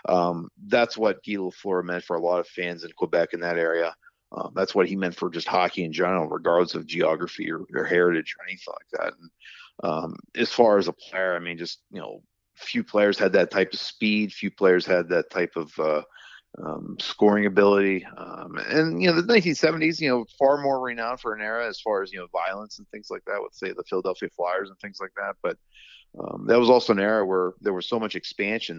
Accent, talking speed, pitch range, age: American, 230 wpm, 85-105 Hz, 40-59